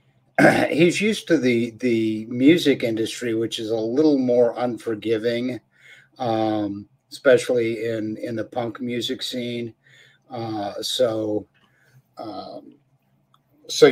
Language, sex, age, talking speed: English, male, 50-69, 110 wpm